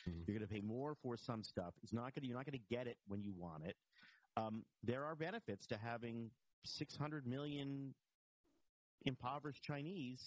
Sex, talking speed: male, 195 wpm